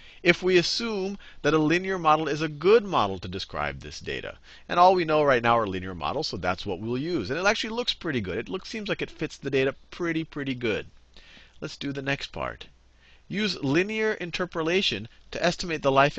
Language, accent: English, American